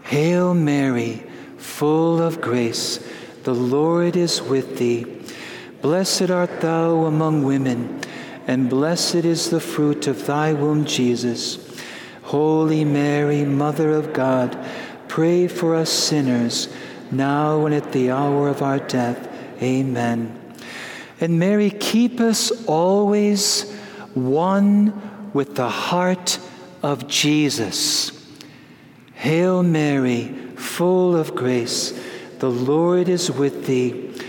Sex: male